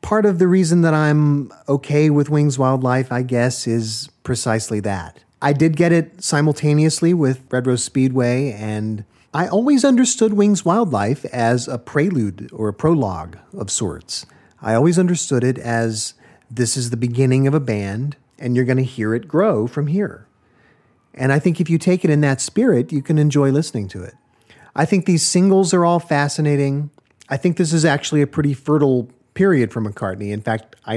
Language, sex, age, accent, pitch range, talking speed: English, male, 40-59, American, 115-160 Hz, 185 wpm